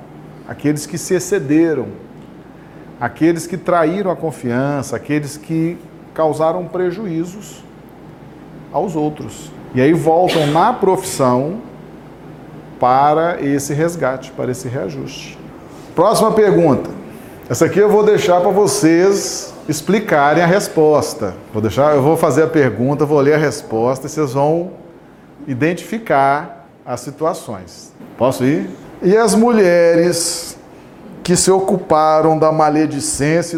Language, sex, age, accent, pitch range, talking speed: Portuguese, male, 40-59, Brazilian, 135-180 Hz, 115 wpm